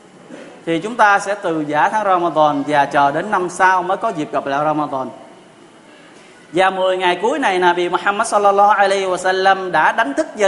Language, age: Vietnamese, 20-39